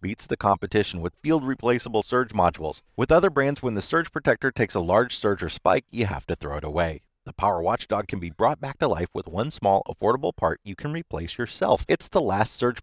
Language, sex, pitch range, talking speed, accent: English, male, 85-115 Hz, 225 wpm, American